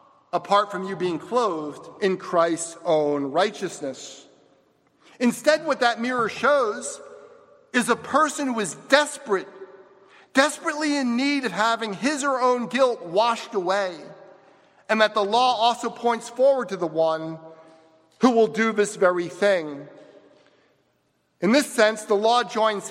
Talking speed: 140 wpm